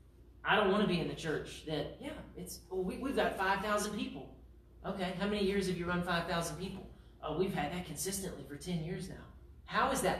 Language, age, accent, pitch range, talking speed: English, 40-59, American, 165-225 Hz, 225 wpm